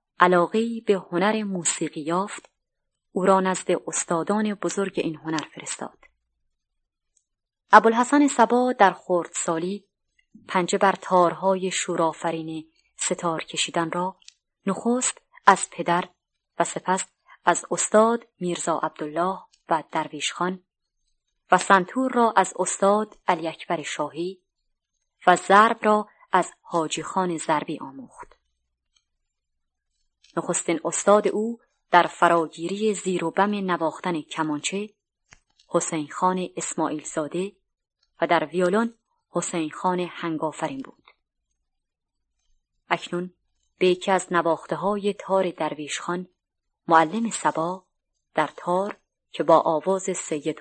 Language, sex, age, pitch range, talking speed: Persian, female, 20-39, 160-195 Hz, 105 wpm